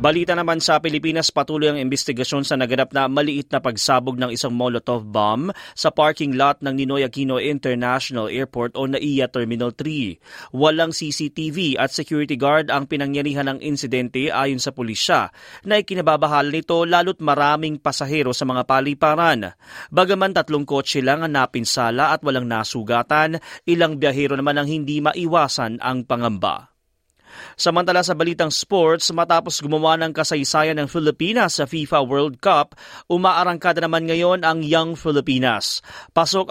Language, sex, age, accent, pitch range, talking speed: Filipino, male, 30-49, native, 135-165 Hz, 145 wpm